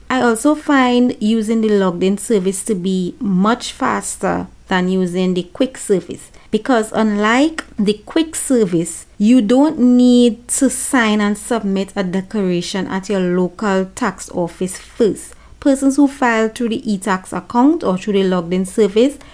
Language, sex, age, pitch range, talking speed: English, female, 40-59, 185-230 Hz, 155 wpm